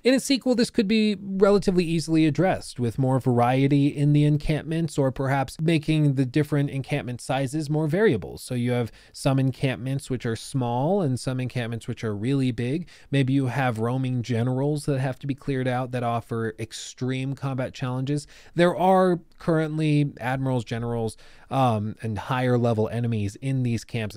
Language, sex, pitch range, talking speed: English, male, 115-145 Hz, 170 wpm